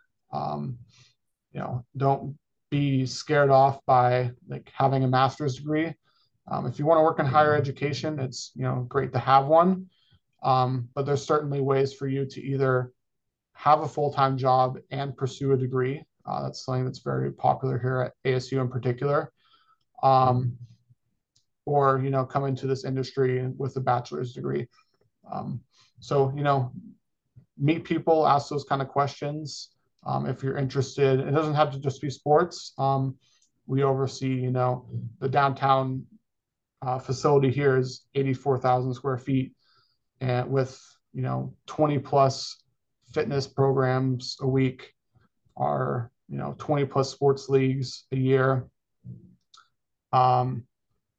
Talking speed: 145 wpm